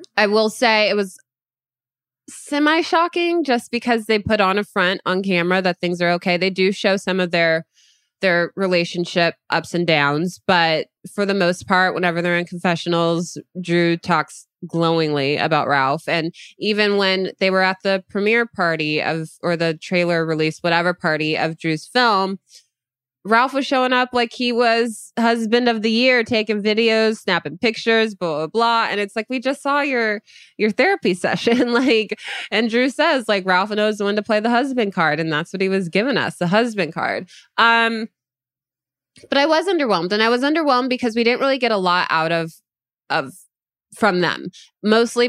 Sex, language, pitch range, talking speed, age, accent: female, English, 170-230 Hz, 180 wpm, 20-39, American